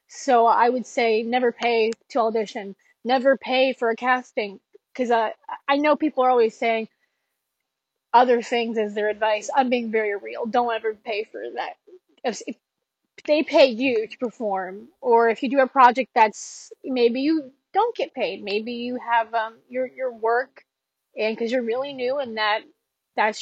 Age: 20-39